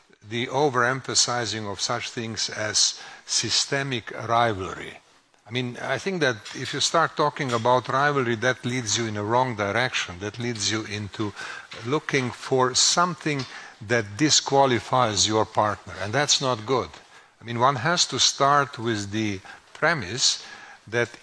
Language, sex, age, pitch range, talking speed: English, male, 50-69, 110-140 Hz, 145 wpm